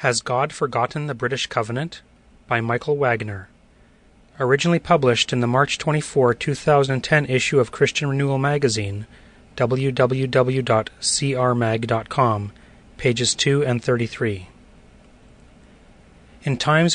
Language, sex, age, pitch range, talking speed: English, male, 30-49, 120-145 Hz, 100 wpm